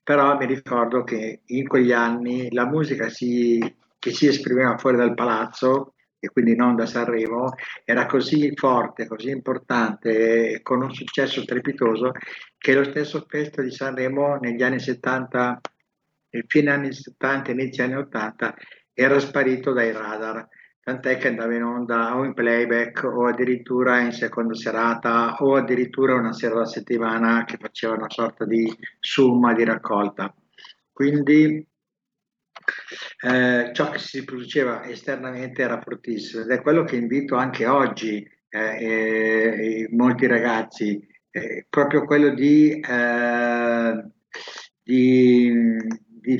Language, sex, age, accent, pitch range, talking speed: Italian, male, 60-79, native, 115-135 Hz, 135 wpm